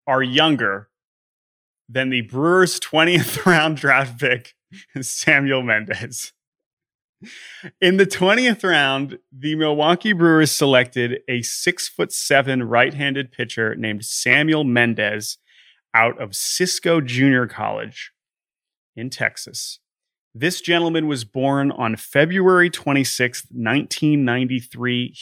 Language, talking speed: English, 105 wpm